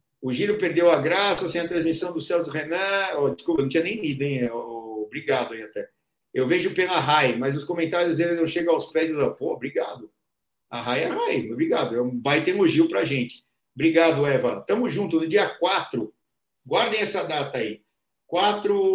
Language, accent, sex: Portuguese, Brazilian, male